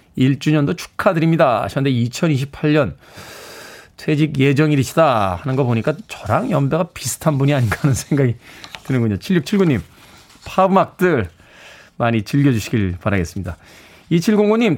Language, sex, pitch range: Korean, male, 115-160 Hz